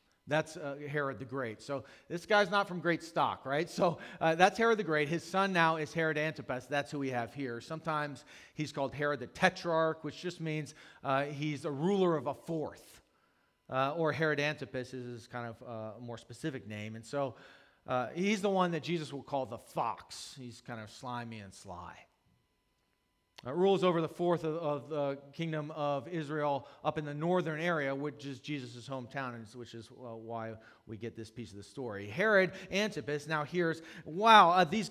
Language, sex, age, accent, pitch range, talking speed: English, male, 40-59, American, 130-175 Hz, 195 wpm